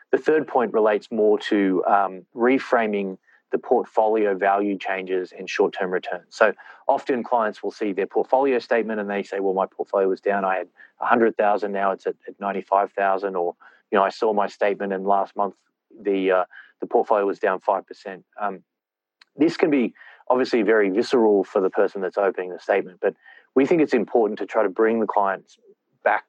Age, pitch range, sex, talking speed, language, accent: 30-49, 95-105 Hz, male, 185 wpm, English, Australian